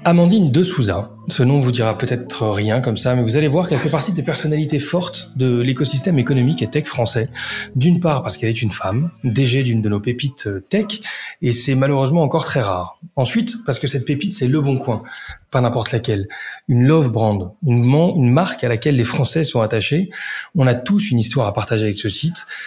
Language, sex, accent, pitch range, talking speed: French, male, French, 115-145 Hz, 215 wpm